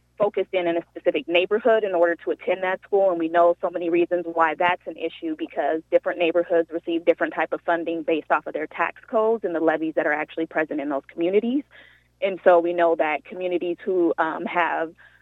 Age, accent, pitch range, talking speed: 30-49, American, 170-195 Hz, 215 wpm